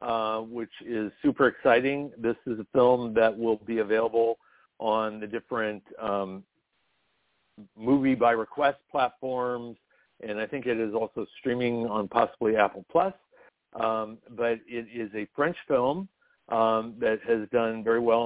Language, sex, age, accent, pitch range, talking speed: English, male, 60-79, American, 110-125 Hz, 150 wpm